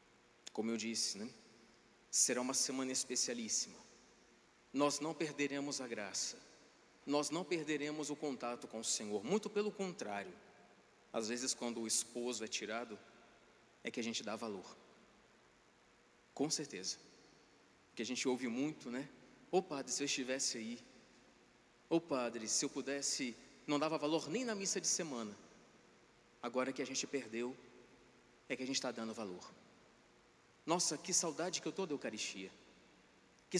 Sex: male